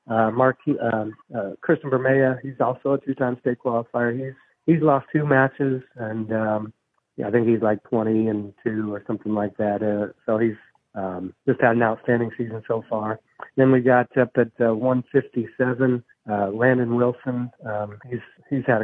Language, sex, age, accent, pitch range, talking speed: English, male, 40-59, American, 110-130 Hz, 180 wpm